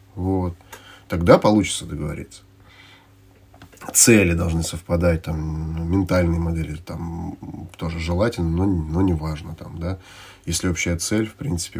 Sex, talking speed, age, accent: male, 120 wpm, 30-49, native